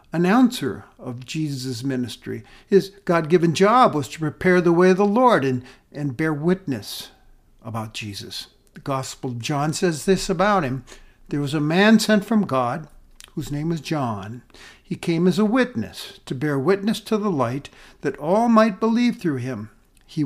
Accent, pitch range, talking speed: American, 140-195 Hz, 170 wpm